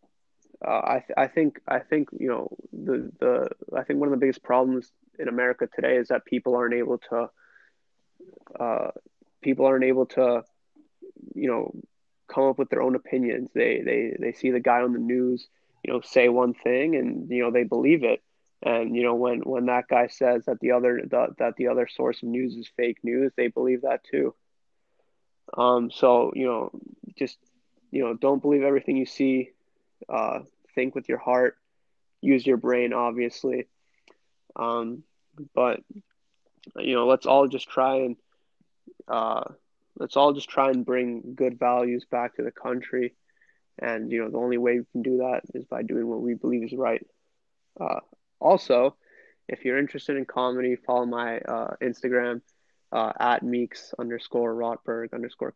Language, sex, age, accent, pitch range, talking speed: English, male, 20-39, American, 120-135 Hz, 175 wpm